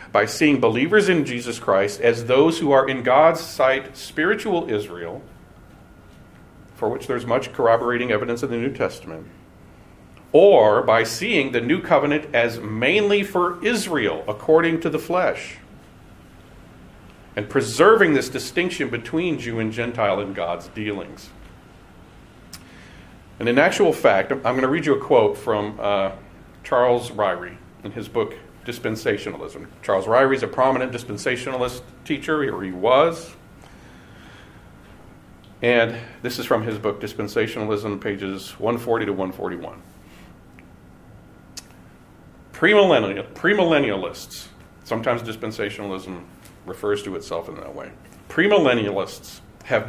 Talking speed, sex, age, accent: 125 wpm, male, 40-59, American